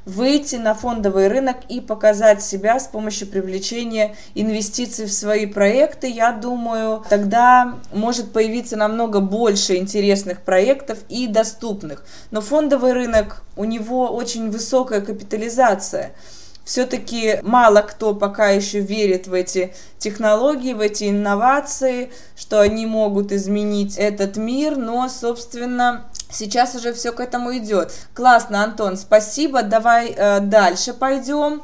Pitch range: 205-250 Hz